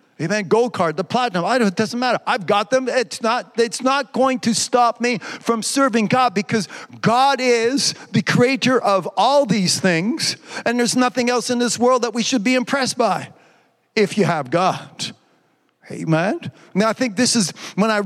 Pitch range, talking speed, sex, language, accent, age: 195-245 Hz, 195 wpm, male, English, American, 50-69